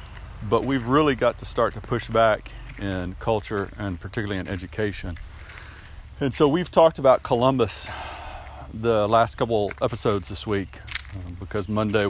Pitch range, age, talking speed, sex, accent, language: 95-130 Hz, 40-59, 150 wpm, male, American, English